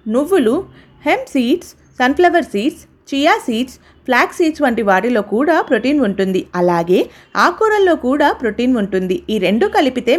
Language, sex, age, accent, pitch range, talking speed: Telugu, female, 30-49, native, 210-305 Hz, 130 wpm